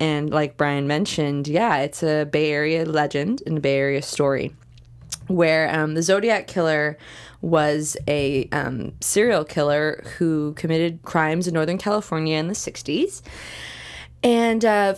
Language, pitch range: English, 150-180 Hz